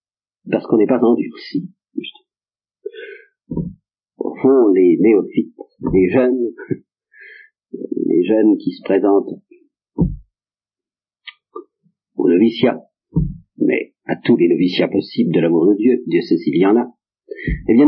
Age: 50-69